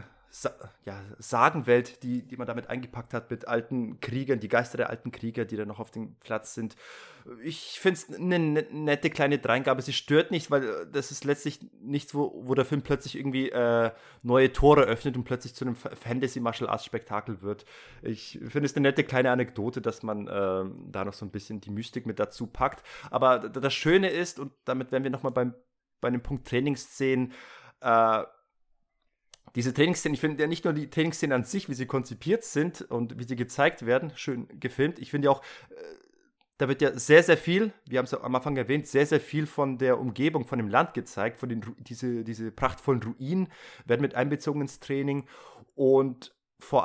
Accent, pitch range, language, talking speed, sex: German, 115-140 Hz, German, 195 wpm, male